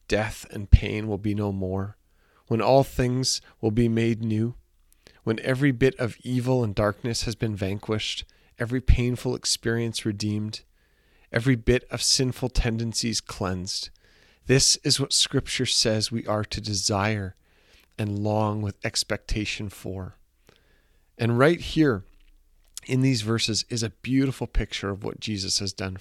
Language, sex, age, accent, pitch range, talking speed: English, male, 40-59, American, 100-125 Hz, 145 wpm